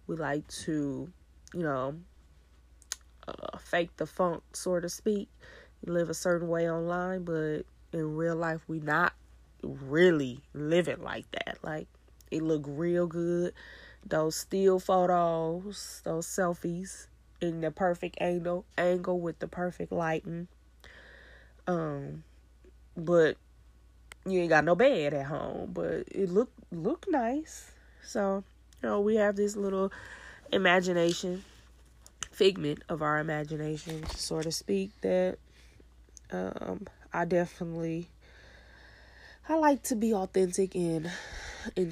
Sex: female